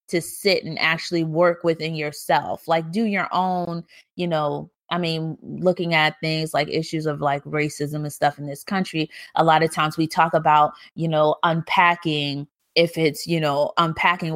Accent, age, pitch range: American, 20-39, 155-180 Hz